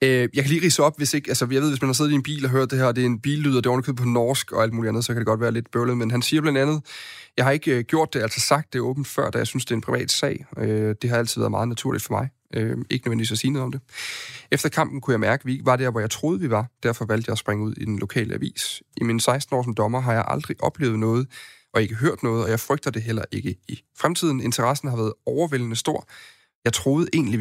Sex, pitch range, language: male, 110-135 Hz, Danish